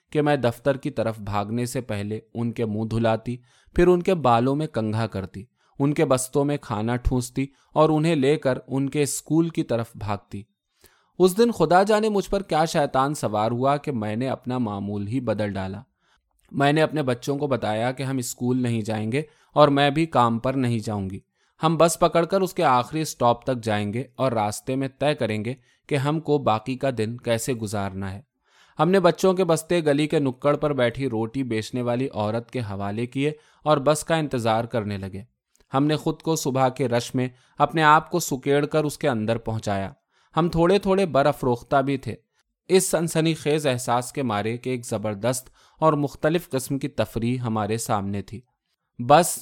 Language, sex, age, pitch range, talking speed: Urdu, male, 20-39, 115-150 Hz, 200 wpm